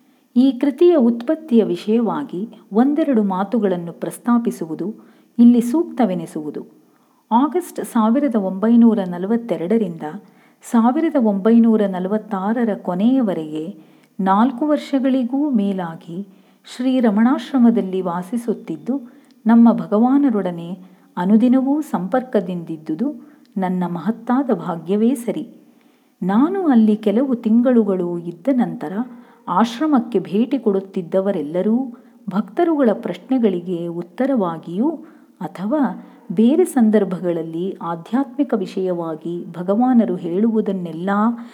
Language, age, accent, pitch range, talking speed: Kannada, 40-59, native, 185-255 Hz, 70 wpm